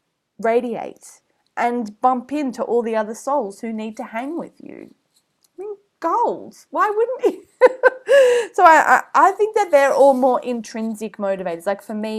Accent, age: Australian, 20-39